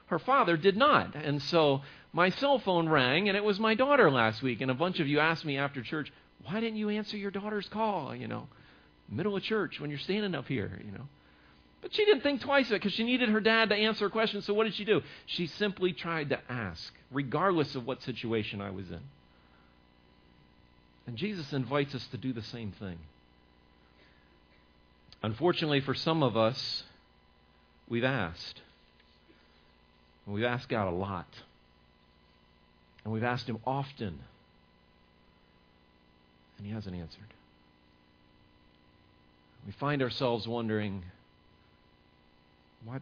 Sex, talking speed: male, 160 wpm